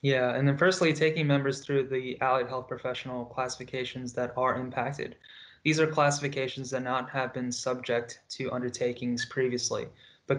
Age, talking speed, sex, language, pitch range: 20-39, 155 wpm, male, English, 125-140 Hz